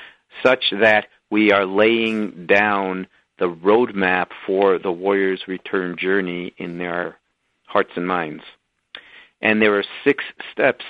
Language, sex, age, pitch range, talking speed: English, male, 50-69, 95-110 Hz, 125 wpm